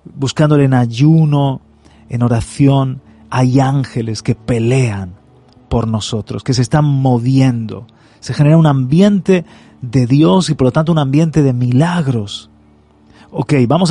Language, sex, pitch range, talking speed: Spanish, male, 115-150 Hz, 135 wpm